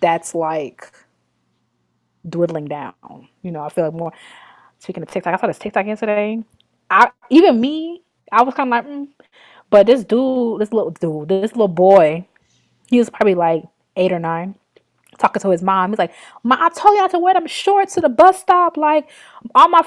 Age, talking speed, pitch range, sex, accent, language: 20-39, 190 wpm, 190-265 Hz, female, American, English